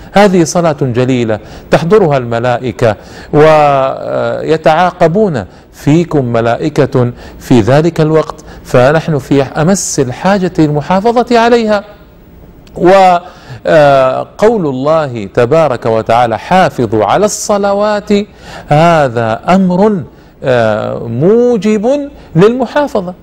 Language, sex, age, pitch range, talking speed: Arabic, male, 50-69, 120-175 Hz, 70 wpm